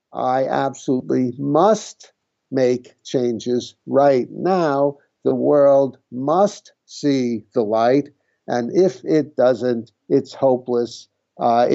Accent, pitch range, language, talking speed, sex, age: American, 120-145 Hz, English, 100 wpm, male, 50-69